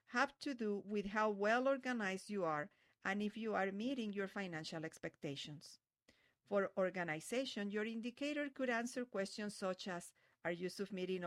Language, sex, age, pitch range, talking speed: English, female, 50-69, 170-220 Hz, 155 wpm